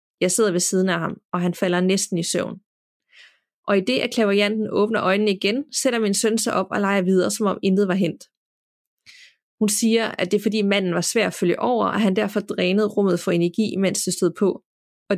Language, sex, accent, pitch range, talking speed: Danish, female, native, 185-220 Hz, 225 wpm